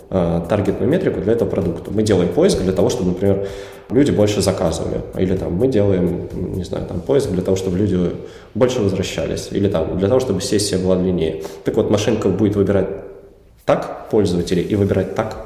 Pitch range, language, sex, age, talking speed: 95-105 Hz, Russian, male, 20-39, 180 wpm